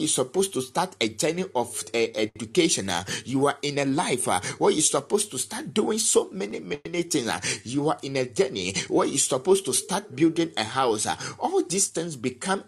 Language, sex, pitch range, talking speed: English, male, 110-160 Hz, 190 wpm